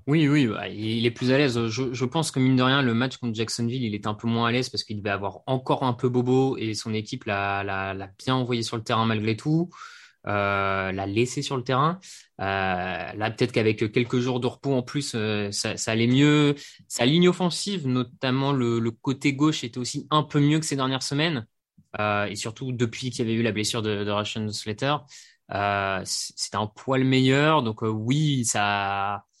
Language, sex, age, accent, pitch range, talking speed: French, male, 20-39, French, 110-135 Hz, 220 wpm